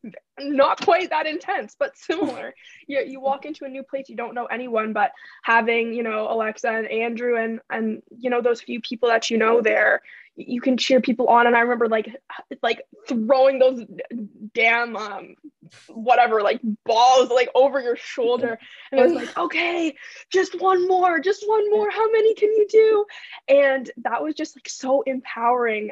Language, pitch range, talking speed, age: English, 225-265 Hz, 185 wpm, 10-29